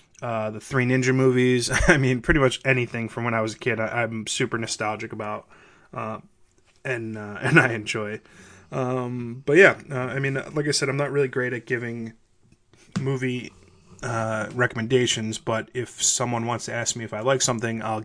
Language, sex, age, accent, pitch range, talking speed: English, male, 20-39, American, 110-130 Hz, 190 wpm